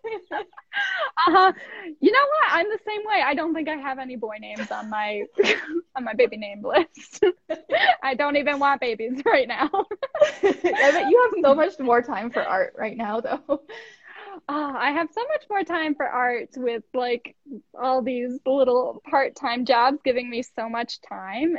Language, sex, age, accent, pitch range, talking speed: English, female, 10-29, American, 230-315 Hz, 170 wpm